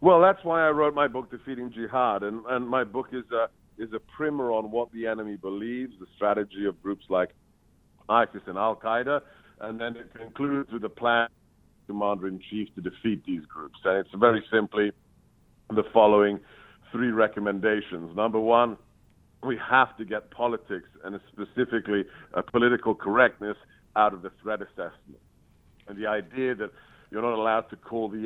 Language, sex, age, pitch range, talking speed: English, male, 50-69, 100-120 Hz, 170 wpm